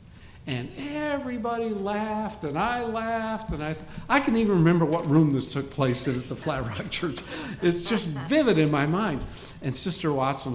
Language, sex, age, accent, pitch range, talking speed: English, male, 50-69, American, 105-150 Hz, 190 wpm